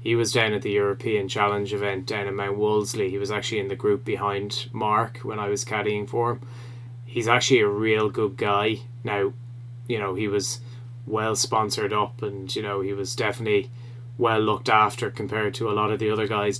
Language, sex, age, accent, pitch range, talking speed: English, male, 20-39, Irish, 110-120 Hz, 205 wpm